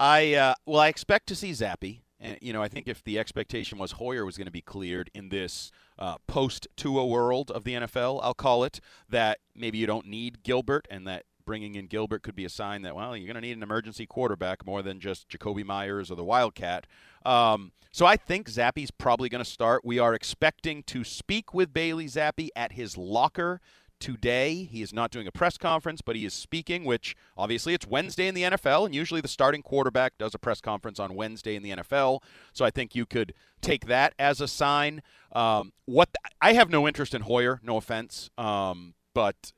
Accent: American